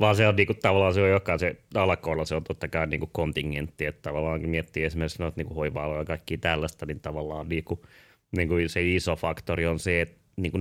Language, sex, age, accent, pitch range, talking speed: Finnish, male, 30-49, native, 80-95 Hz, 205 wpm